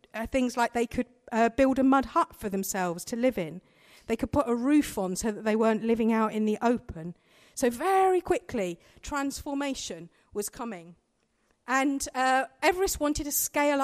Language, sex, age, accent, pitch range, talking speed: English, female, 40-59, British, 225-285 Hz, 180 wpm